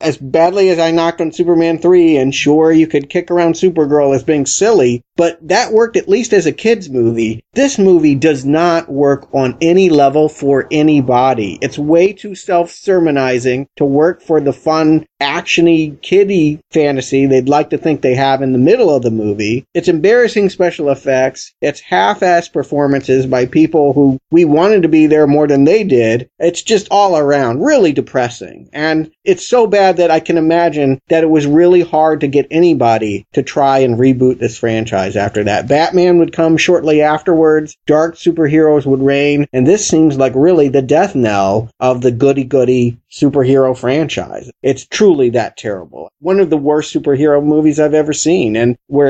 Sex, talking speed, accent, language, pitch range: male, 180 wpm, American, English, 135-165 Hz